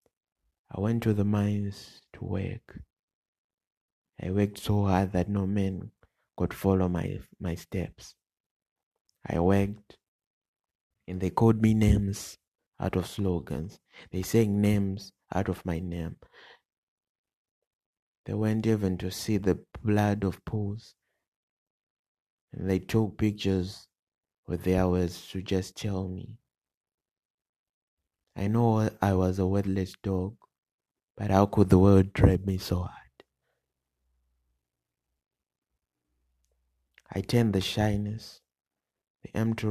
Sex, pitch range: male, 90-105 Hz